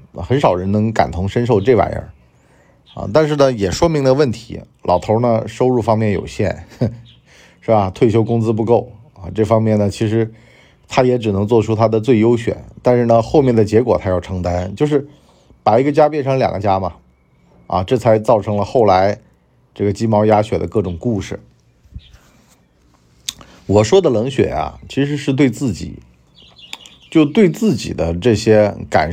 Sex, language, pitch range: male, Chinese, 80-120 Hz